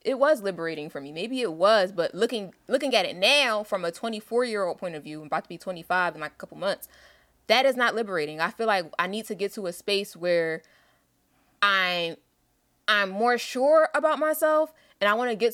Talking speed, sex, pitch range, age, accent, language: 225 wpm, female, 170-220 Hz, 20-39, American, English